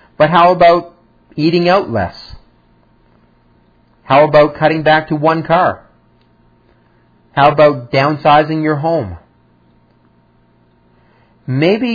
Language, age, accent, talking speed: English, 40-59, American, 95 wpm